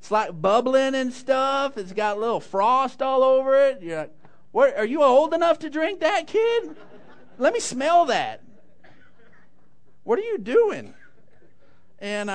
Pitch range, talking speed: 185-275 Hz, 160 wpm